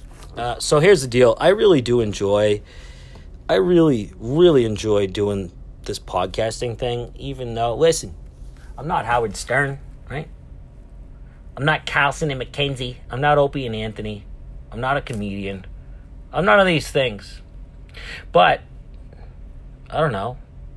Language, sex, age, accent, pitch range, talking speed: English, male, 40-59, American, 80-135 Hz, 140 wpm